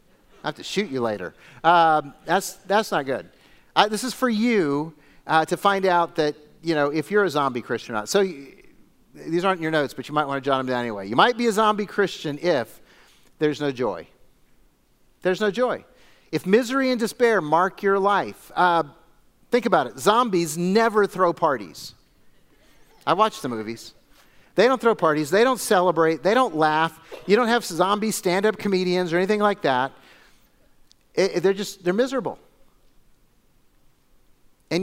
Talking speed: 175 wpm